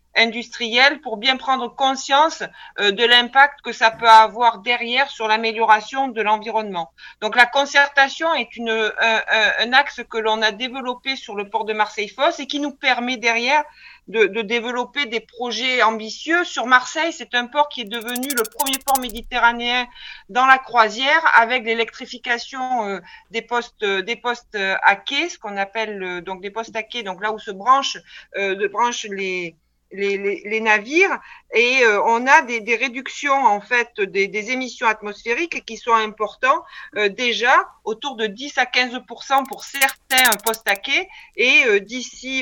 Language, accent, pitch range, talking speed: French, French, 220-270 Hz, 180 wpm